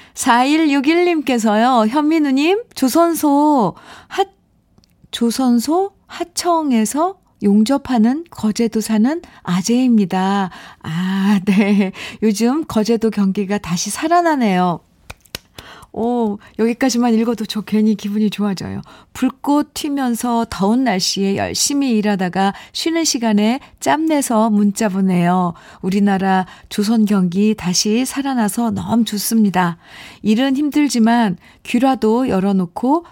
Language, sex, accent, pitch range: Korean, female, native, 205-260 Hz